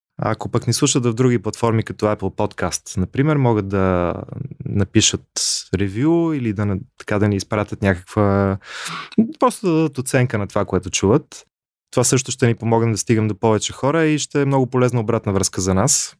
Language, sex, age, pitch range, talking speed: Bulgarian, male, 20-39, 100-130 Hz, 180 wpm